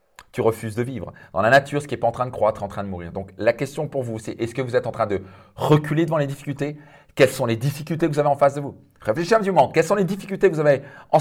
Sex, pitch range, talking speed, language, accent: male, 115-155 Hz, 320 wpm, French, French